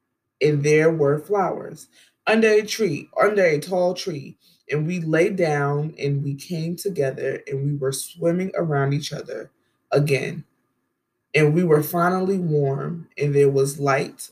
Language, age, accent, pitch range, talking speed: English, 20-39, American, 140-180 Hz, 150 wpm